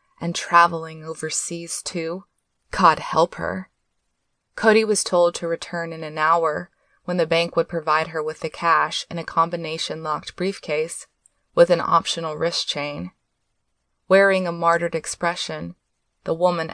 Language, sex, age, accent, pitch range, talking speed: English, female, 20-39, American, 155-180 Hz, 140 wpm